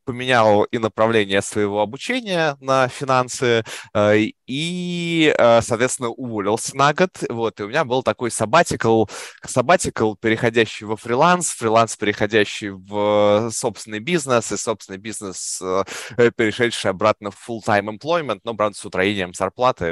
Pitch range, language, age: 95-125 Hz, Russian, 20-39